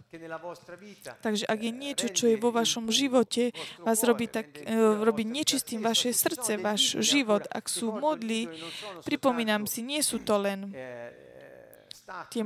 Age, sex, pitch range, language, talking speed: 20-39, female, 210-245 Hz, Slovak, 135 wpm